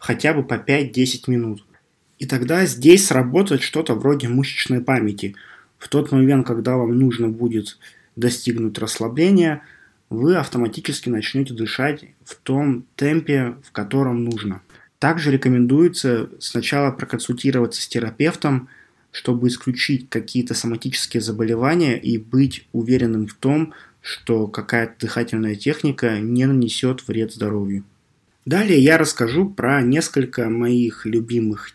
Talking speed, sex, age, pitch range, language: 120 wpm, male, 20-39, 115-145 Hz, Russian